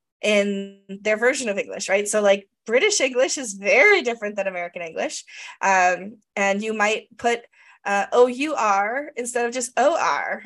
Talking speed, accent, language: 155 wpm, American, English